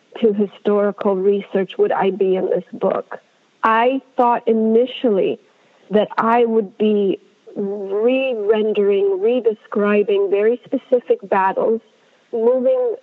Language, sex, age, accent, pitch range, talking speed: English, female, 40-59, American, 210-250 Hz, 95 wpm